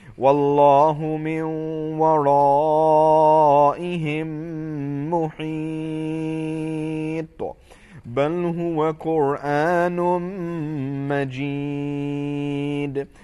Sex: male